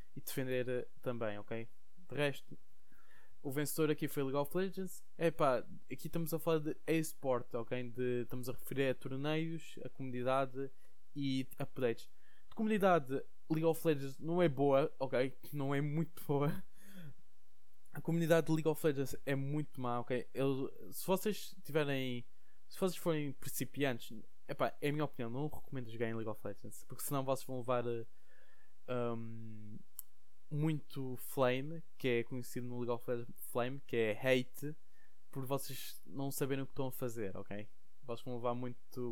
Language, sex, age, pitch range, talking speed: Portuguese, male, 20-39, 125-150 Hz, 165 wpm